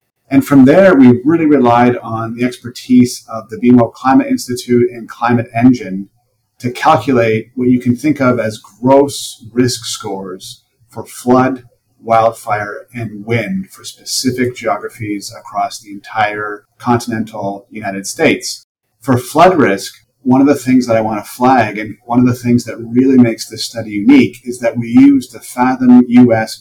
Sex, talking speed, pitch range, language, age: male, 160 wpm, 110-125 Hz, English, 30-49